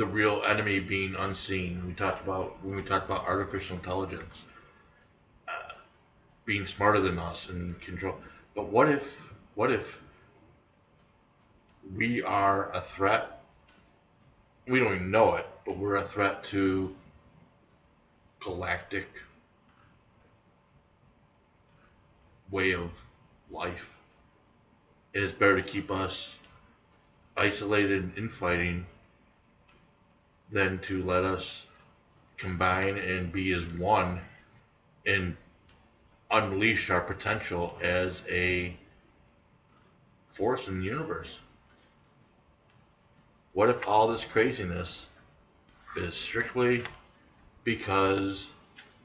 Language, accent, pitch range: English, American, 90-100 Hz